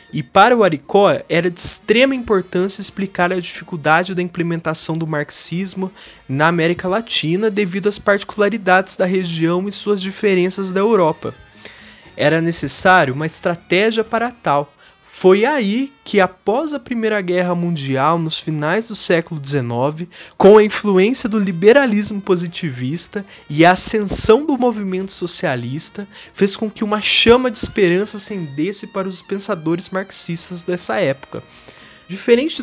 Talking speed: 135 wpm